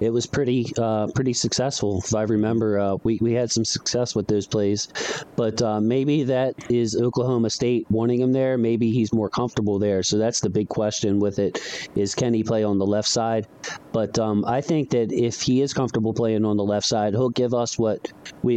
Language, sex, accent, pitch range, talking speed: English, male, American, 110-125 Hz, 220 wpm